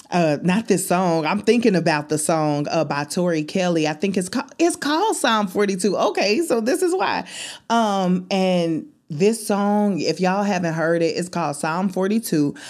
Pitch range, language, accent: 150-185 Hz, English, American